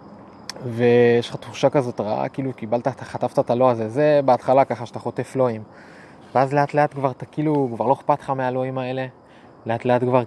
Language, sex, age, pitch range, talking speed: Hebrew, male, 20-39, 115-140 Hz, 185 wpm